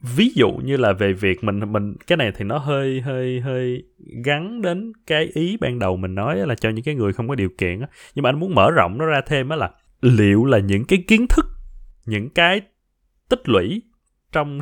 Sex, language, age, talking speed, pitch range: male, Vietnamese, 20-39, 225 wpm, 110-165 Hz